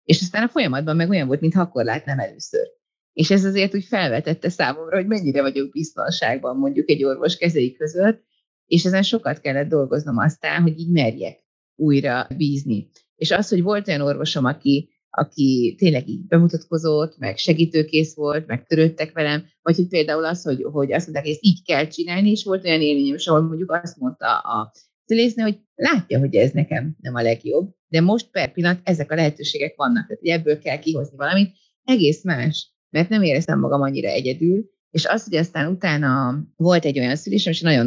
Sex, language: female, Hungarian